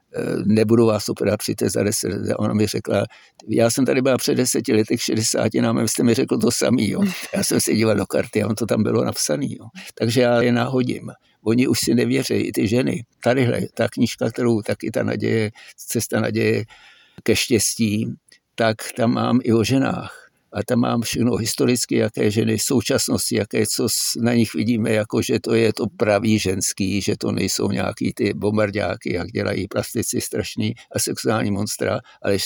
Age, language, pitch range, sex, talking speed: 60-79, English, 105-120 Hz, male, 185 wpm